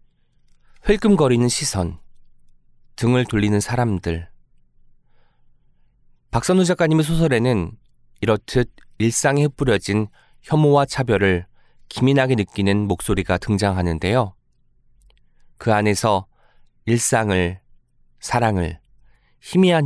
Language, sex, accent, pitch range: Korean, male, native, 95-145 Hz